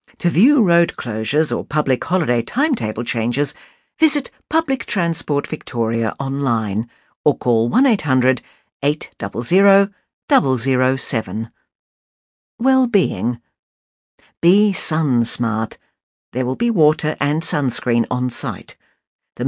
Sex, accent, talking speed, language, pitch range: female, British, 105 wpm, English, 120-175 Hz